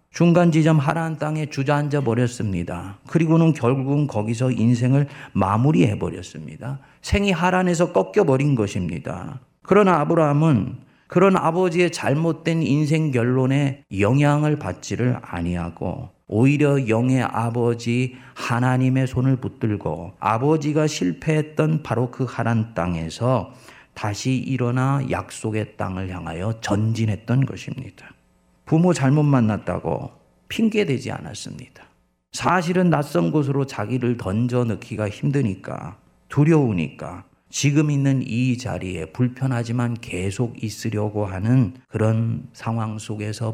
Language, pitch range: Korean, 105-145 Hz